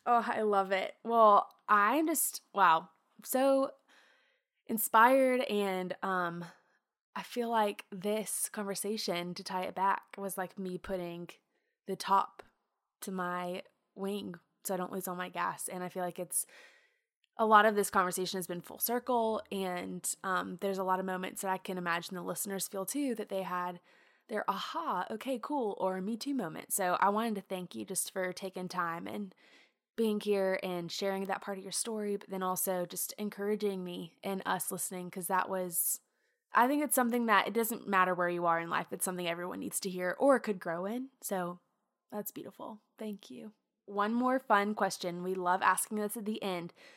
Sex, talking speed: female, 190 wpm